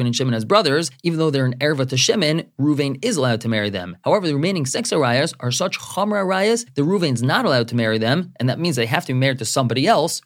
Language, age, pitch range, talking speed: English, 30-49, 125-155 Hz, 260 wpm